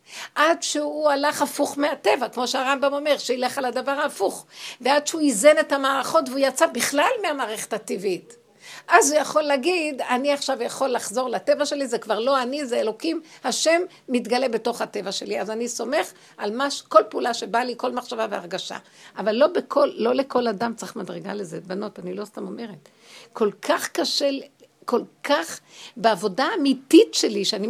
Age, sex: 60-79, female